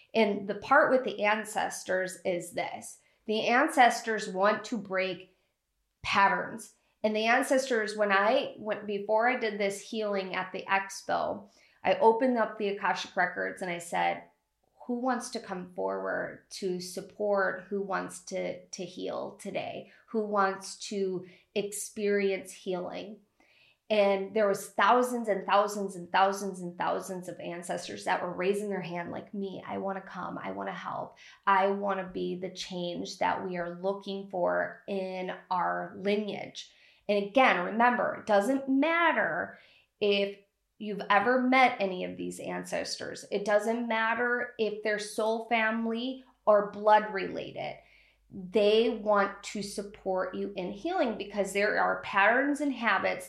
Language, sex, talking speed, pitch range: English, female, 145 wpm, 190-225 Hz